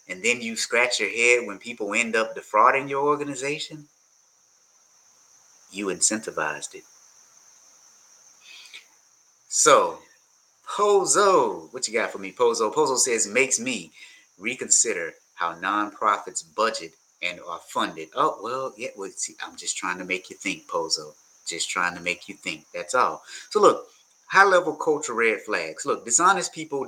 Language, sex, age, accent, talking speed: English, male, 30-49, American, 145 wpm